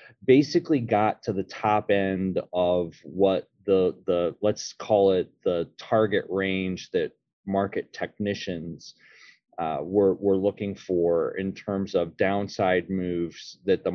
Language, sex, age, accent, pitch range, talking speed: English, male, 30-49, American, 95-115 Hz, 135 wpm